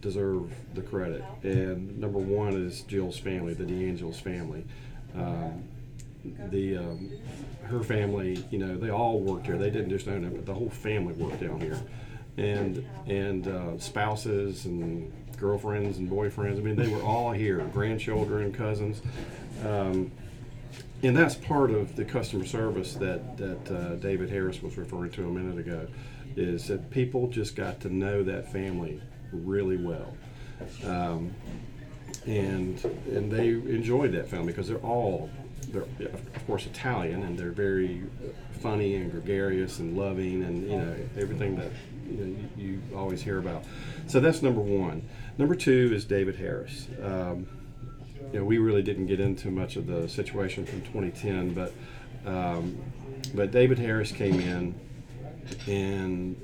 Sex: male